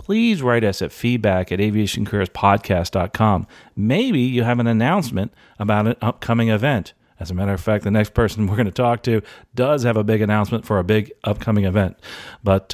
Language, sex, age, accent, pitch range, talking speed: English, male, 40-59, American, 100-120 Hz, 190 wpm